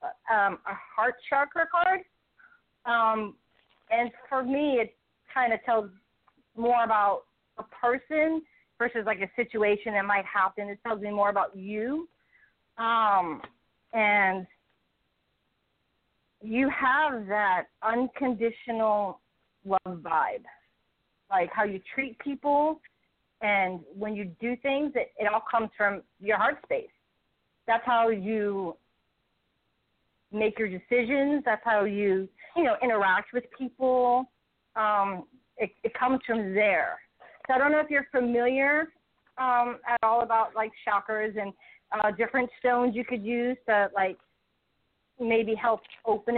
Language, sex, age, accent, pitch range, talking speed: English, female, 40-59, American, 210-255 Hz, 130 wpm